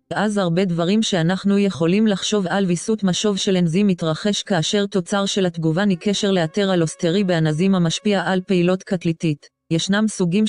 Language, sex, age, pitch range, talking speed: English, female, 30-49, 170-200 Hz, 150 wpm